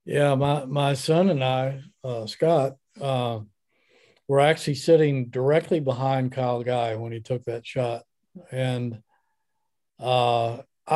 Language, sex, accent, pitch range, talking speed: English, male, American, 125-145 Hz, 125 wpm